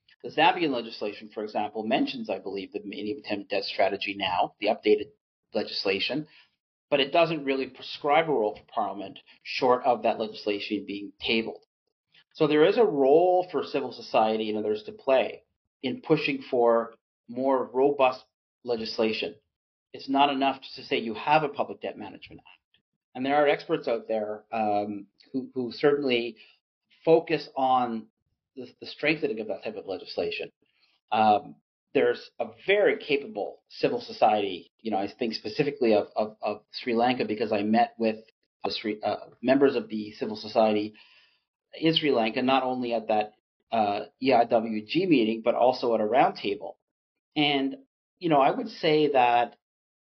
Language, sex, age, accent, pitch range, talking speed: English, male, 40-59, American, 110-145 Hz, 155 wpm